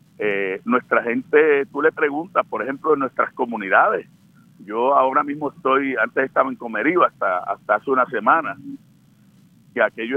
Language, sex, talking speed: Spanish, male, 155 wpm